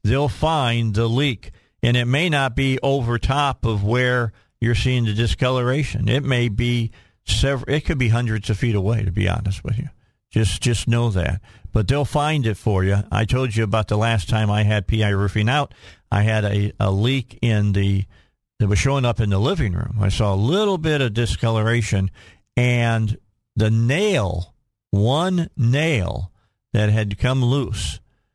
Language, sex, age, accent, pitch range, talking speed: English, male, 50-69, American, 105-125 Hz, 185 wpm